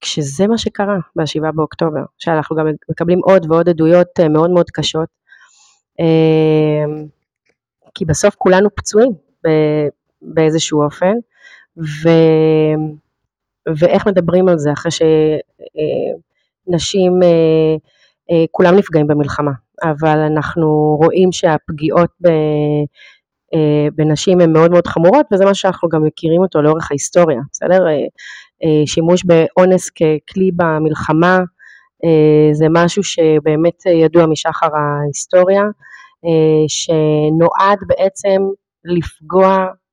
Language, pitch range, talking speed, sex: Hebrew, 155-185 Hz, 90 wpm, female